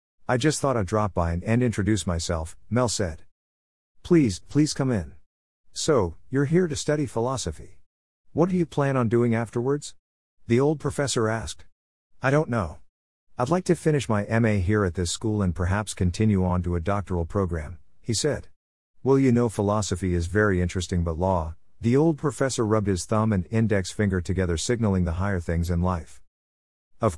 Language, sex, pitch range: English, male, 85-115 Hz